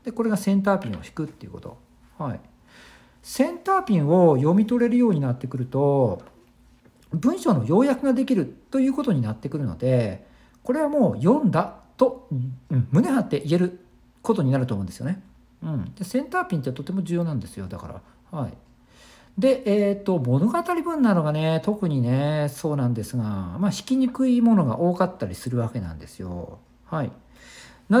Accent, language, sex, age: native, Japanese, male, 50-69